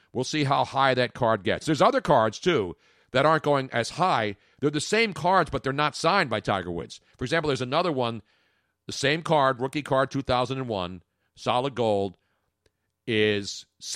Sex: male